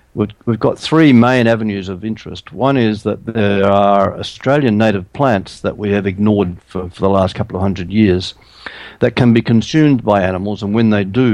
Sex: male